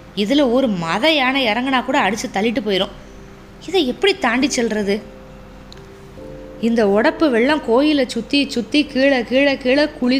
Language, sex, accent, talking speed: Tamil, female, native, 135 wpm